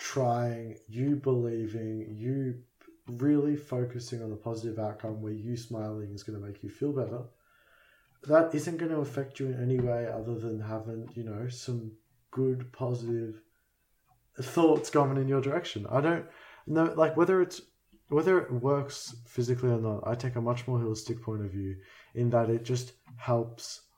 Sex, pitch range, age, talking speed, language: male, 110-130 Hz, 20-39, 170 wpm, English